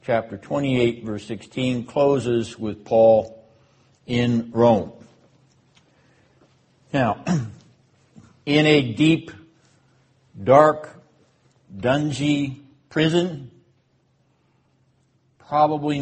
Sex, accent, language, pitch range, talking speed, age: male, American, English, 115-140 Hz, 65 wpm, 60-79